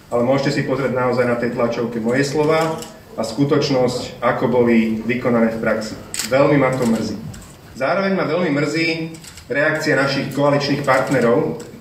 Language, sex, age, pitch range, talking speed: Slovak, male, 30-49, 125-150 Hz, 145 wpm